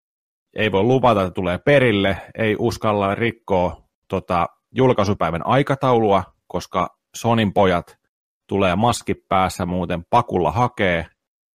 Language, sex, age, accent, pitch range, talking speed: Finnish, male, 30-49, native, 90-120 Hz, 105 wpm